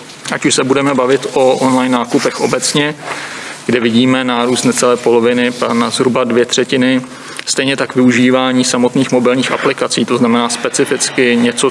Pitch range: 120-130 Hz